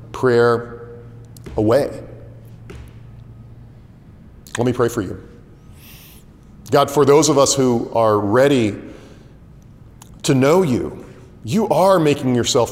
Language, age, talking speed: English, 40-59, 105 wpm